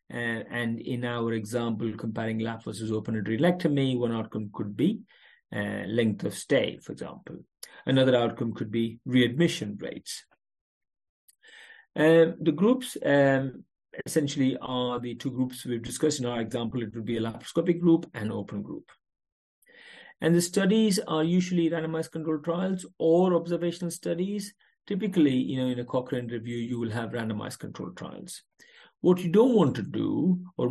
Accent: Indian